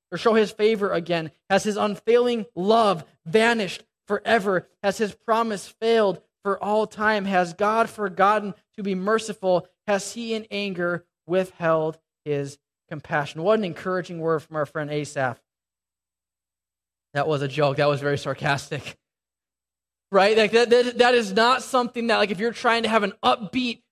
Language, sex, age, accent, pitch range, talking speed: English, male, 20-39, American, 175-210 Hz, 160 wpm